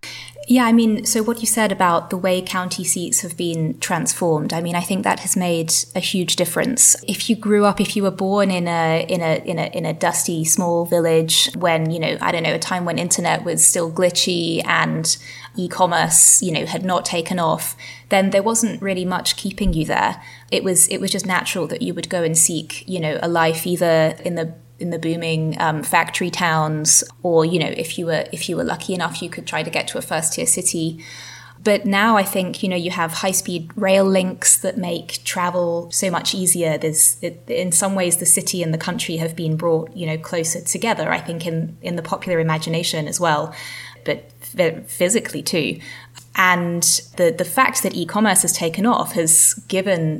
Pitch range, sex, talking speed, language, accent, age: 165-190 Hz, female, 215 wpm, English, British, 20-39